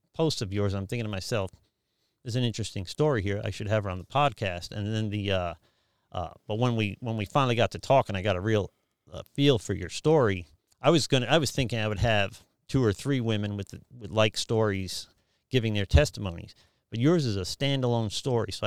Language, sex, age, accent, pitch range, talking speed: English, male, 40-59, American, 100-130 Hz, 225 wpm